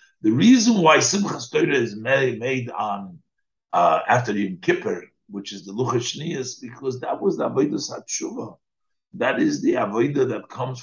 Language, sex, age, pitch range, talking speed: English, male, 60-79, 120-175 Hz, 160 wpm